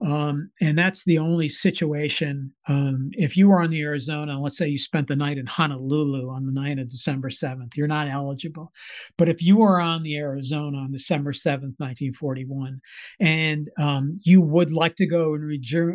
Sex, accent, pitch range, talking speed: male, American, 140-165 Hz, 190 wpm